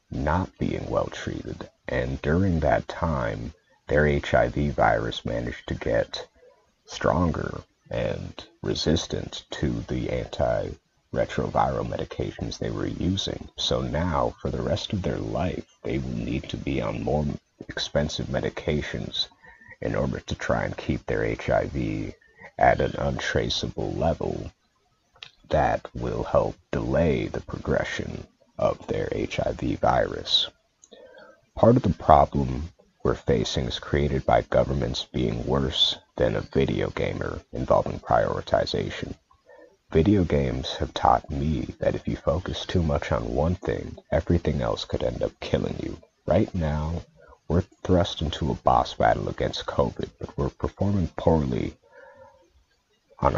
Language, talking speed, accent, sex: English, 135 wpm, American, male